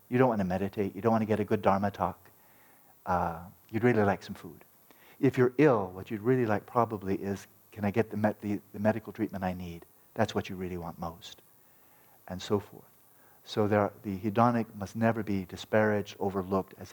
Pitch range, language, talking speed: 100-120 Hz, English, 215 wpm